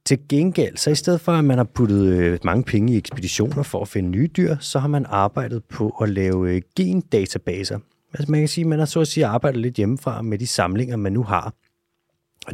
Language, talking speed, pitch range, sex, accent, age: Danish, 200 wpm, 110-145 Hz, male, native, 30-49